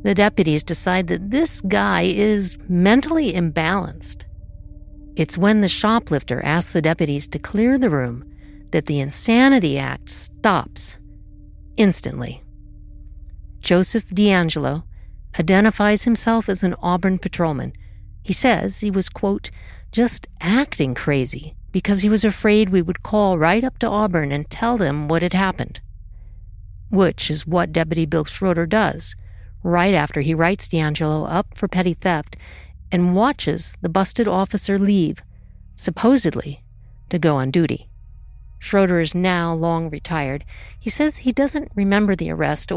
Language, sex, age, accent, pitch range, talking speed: English, female, 50-69, American, 140-200 Hz, 140 wpm